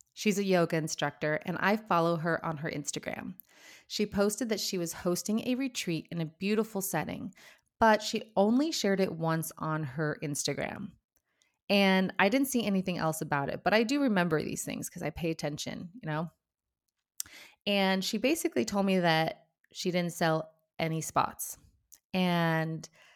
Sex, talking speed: female, 165 wpm